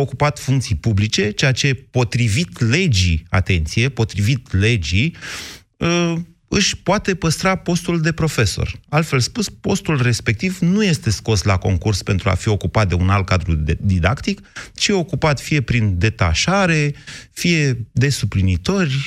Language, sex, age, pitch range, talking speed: Romanian, male, 30-49, 105-150 Hz, 135 wpm